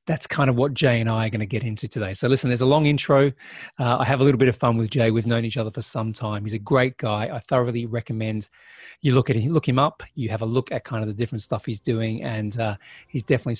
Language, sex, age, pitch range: English, male, 30-49, 115-150 Hz